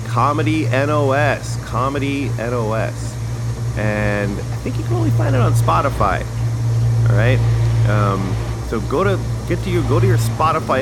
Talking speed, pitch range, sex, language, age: 150 wpm, 115-125 Hz, male, English, 30-49